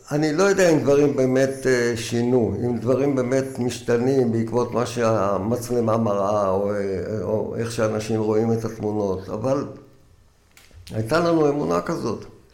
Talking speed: 130 wpm